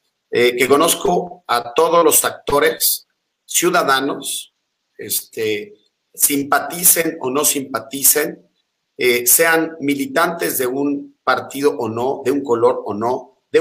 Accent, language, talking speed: Mexican, Spanish, 120 wpm